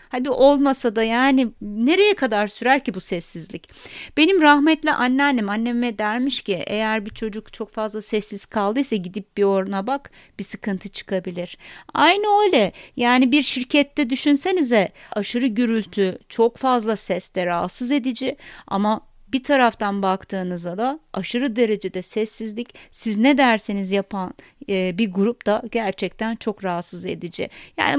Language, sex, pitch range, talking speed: Turkish, female, 200-255 Hz, 135 wpm